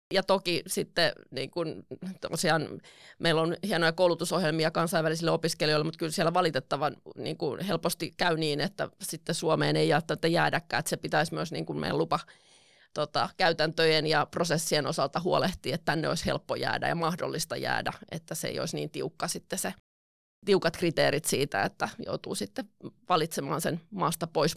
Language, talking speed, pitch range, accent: Finnish, 165 wpm, 150-175 Hz, native